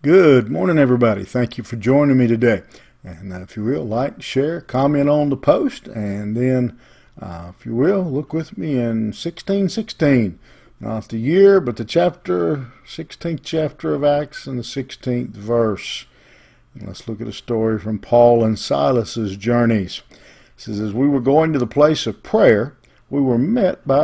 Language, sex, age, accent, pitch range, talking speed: English, male, 50-69, American, 110-135 Hz, 175 wpm